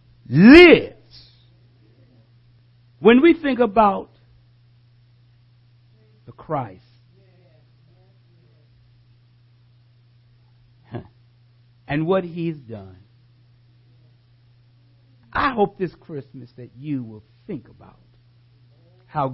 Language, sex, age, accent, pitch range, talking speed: English, male, 60-79, American, 120-160 Hz, 65 wpm